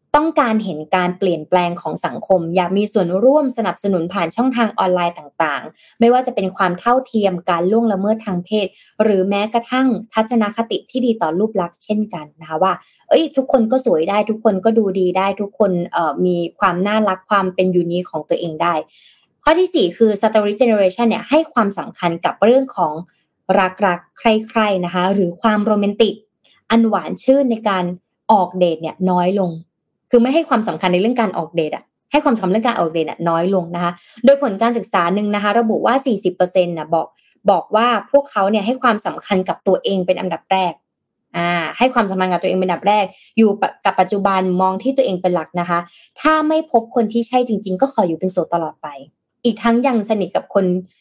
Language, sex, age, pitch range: Thai, female, 20-39, 180-230 Hz